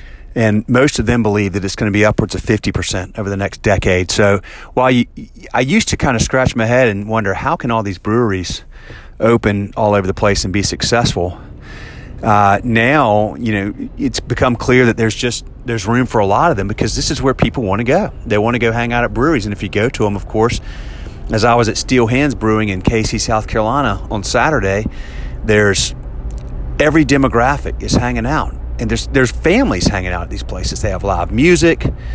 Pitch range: 100-130 Hz